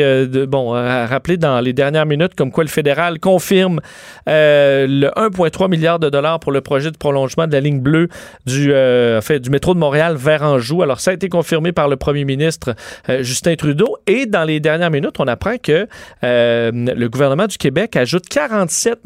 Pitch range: 130-165 Hz